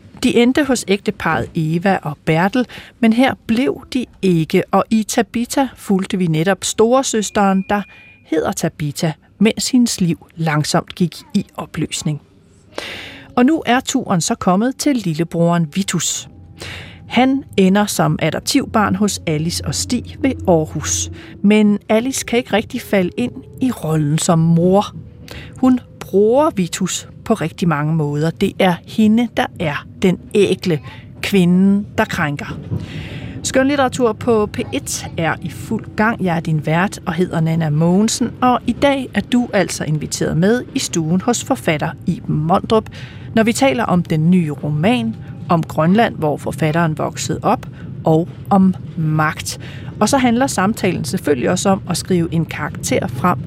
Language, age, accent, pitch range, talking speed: Danish, 40-59, native, 160-225 Hz, 150 wpm